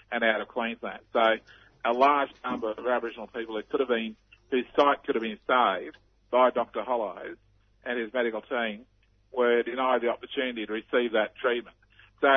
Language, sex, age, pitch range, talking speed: English, male, 50-69, 110-125 Hz, 180 wpm